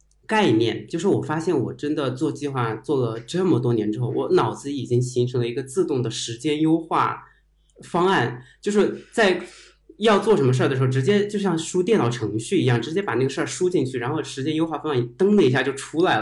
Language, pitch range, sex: Chinese, 125-165 Hz, male